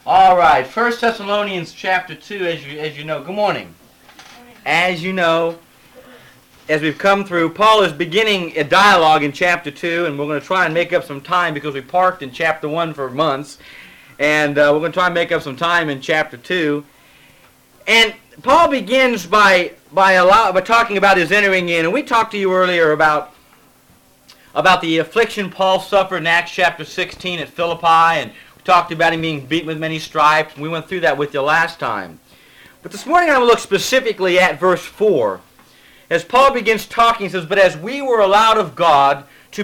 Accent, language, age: American, English, 40-59